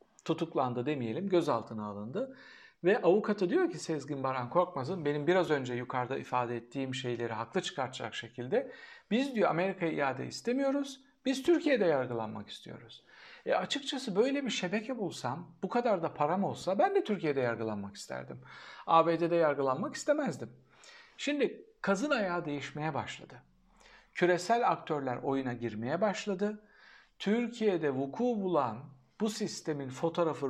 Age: 60-79